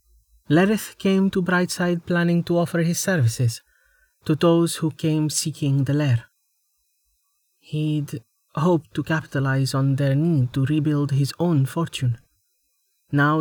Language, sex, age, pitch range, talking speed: English, male, 30-49, 135-170 Hz, 130 wpm